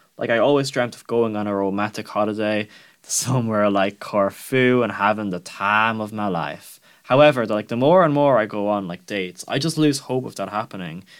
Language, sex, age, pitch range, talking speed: English, male, 10-29, 100-130 Hz, 215 wpm